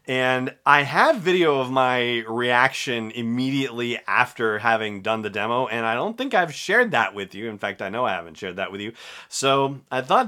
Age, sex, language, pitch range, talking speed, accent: 30-49, male, English, 110-135 Hz, 205 wpm, American